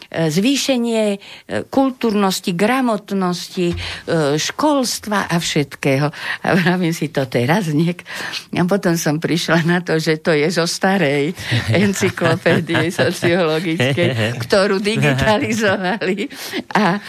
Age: 50-69